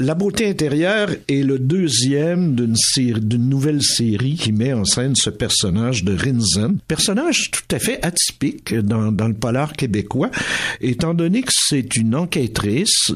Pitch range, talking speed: 110-155 Hz, 160 wpm